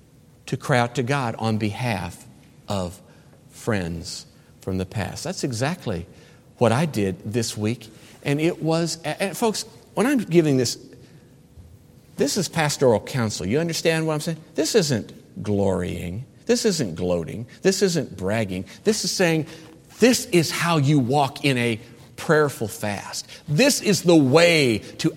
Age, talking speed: 50-69, 150 wpm